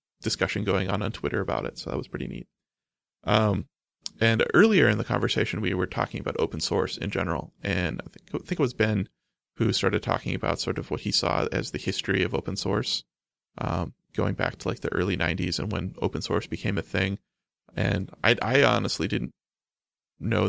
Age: 30-49